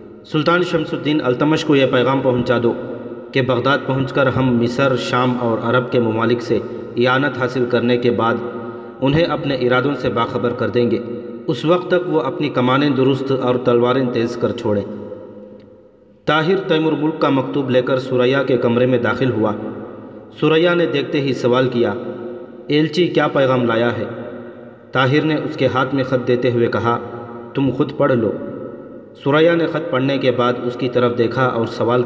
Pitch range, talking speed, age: 120-145 Hz, 180 wpm, 40-59